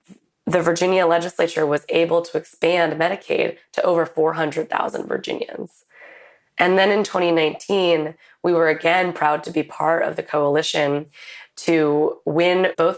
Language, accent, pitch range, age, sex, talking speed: English, American, 155-195 Hz, 20-39, female, 135 wpm